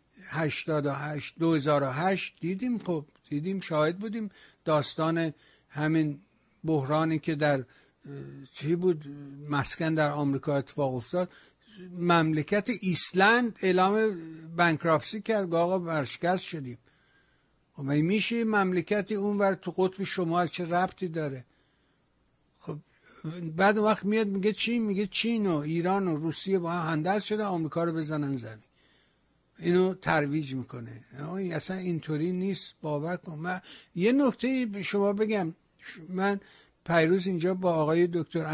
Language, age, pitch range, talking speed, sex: Persian, 60-79, 150-190 Hz, 120 wpm, male